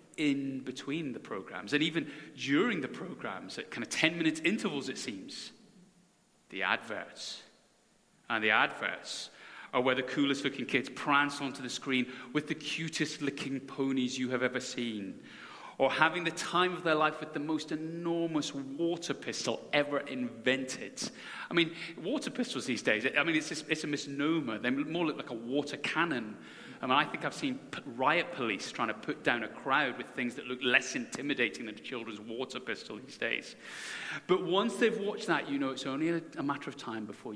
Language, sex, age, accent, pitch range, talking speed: English, male, 30-49, British, 130-190 Hz, 185 wpm